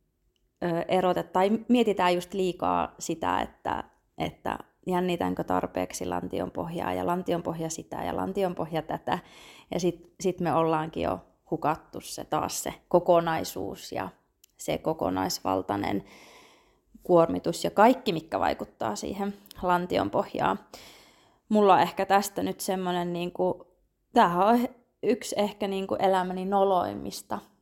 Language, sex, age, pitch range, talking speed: Finnish, female, 20-39, 170-210 Hz, 125 wpm